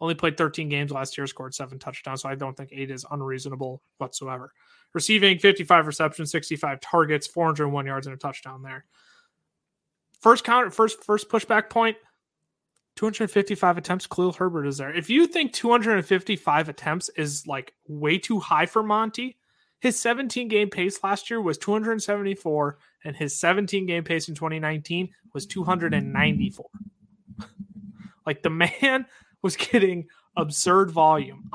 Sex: male